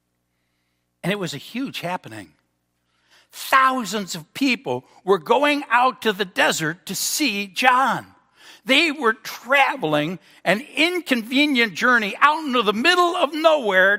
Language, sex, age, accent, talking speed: English, male, 60-79, American, 130 wpm